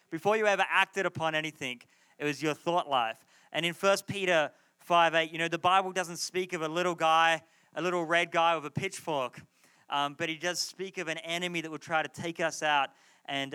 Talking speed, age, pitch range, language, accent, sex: 215 wpm, 30-49, 150-185 Hz, English, Australian, male